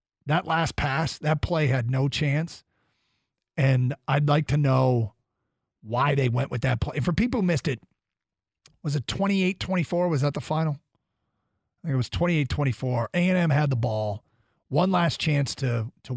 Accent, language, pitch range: American, English, 125-165 Hz